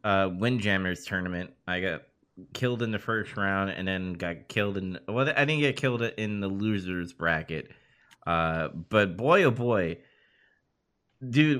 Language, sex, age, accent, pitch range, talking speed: English, male, 30-49, American, 90-115 Hz, 160 wpm